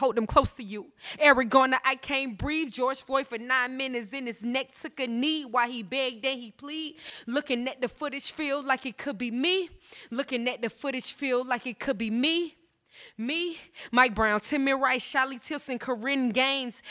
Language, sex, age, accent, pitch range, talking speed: English, female, 20-39, American, 250-280 Hz, 200 wpm